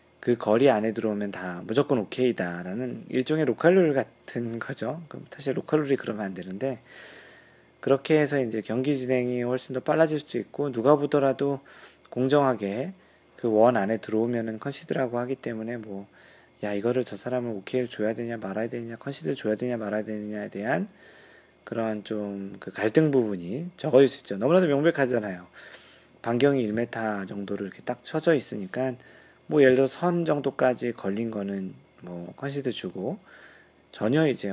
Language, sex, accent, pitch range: Korean, male, native, 105-140 Hz